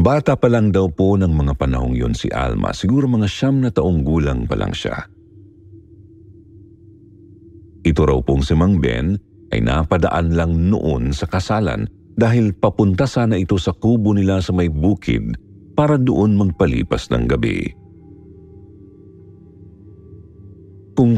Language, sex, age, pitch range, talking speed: Filipino, male, 50-69, 85-110 Hz, 135 wpm